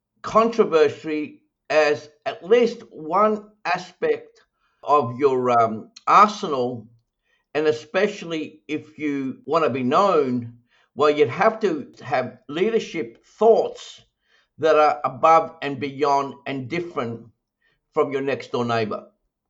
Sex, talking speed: male, 115 wpm